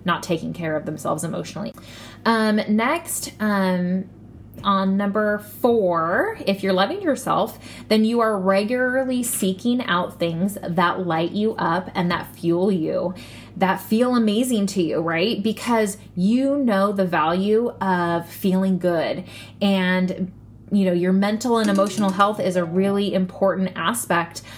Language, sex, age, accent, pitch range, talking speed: English, female, 20-39, American, 185-225 Hz, 140 wpm